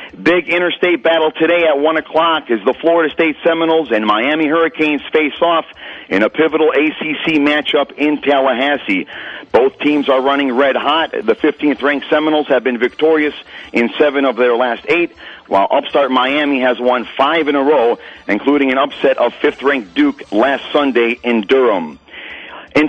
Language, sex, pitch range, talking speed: English, male, 140-165 Hz, 165 wpm